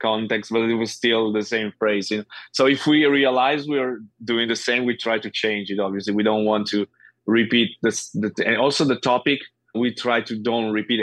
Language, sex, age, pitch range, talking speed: English, male, 20-39, 105-125 Hz, 220 wpm